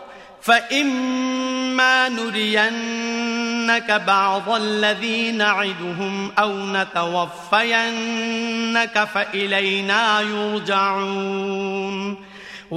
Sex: male